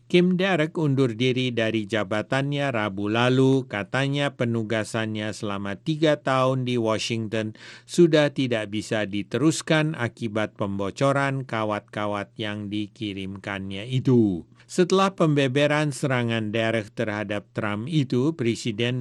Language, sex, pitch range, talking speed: English, male, 105-135 Hz, 105 wpm